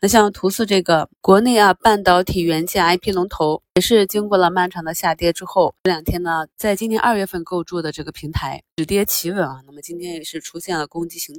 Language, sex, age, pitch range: Chinese, female, 20-39, 155-190 Hz